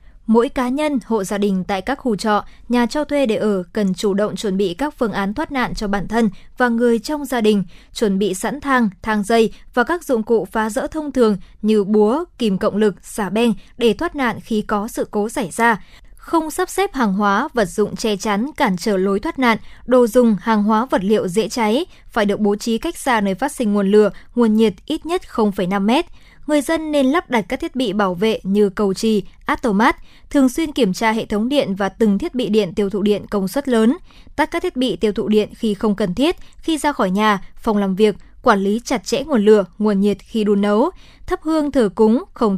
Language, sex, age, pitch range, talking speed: Vietnamese, male, 20-39, 205-260 Hz, 235 wpm